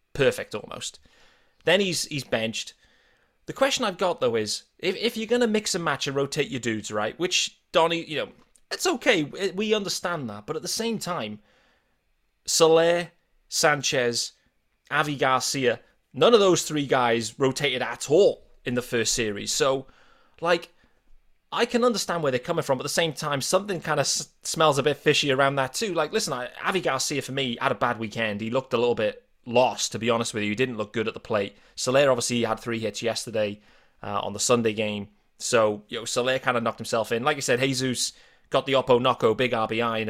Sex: male